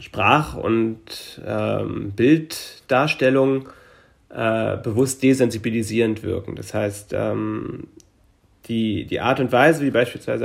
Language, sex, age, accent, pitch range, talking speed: German, male, 30-49, German, 110-125 Hz, 105 wpm